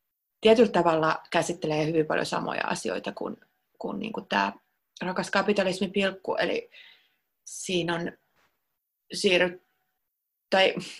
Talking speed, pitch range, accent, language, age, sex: 105 wpm, 165-200 Hz, native, Finnish, 30-49, female